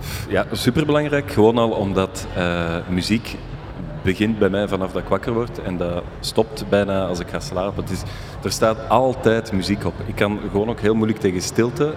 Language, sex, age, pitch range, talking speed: Dutch, male, 30-49, 95-110 Hz, 190 wpm